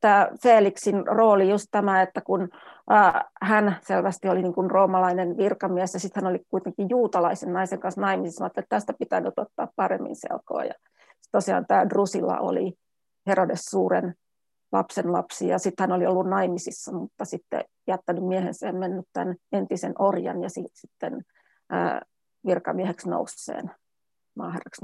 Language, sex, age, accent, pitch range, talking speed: Finnish, female, 30-49, native, 180-200 Hz, 135 wpm